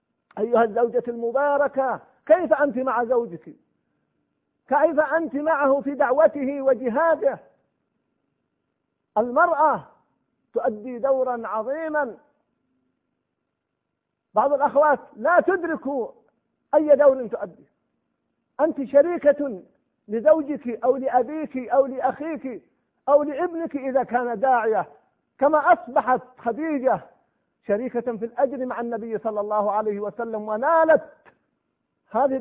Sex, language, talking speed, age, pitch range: male, Arabic, 95 wpm, 50-69, 240-300 Hz